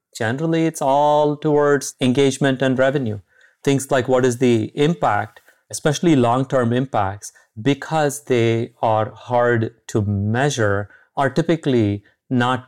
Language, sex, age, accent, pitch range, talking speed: English, male, 30-49, Indian, 110-150 Hz, 120 wpm